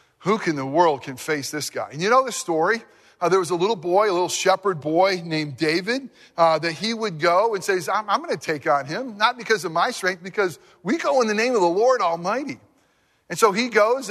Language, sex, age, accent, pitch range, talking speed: English, male, 40-59, American, 165-230 Hz, 245 wpm